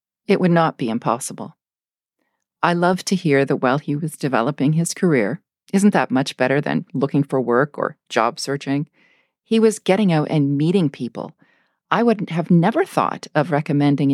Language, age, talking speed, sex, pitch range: English, 40-59, 175 wpm, female, 140-180 Hz